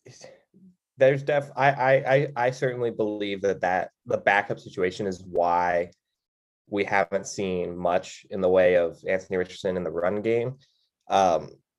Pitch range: 100-140 Hz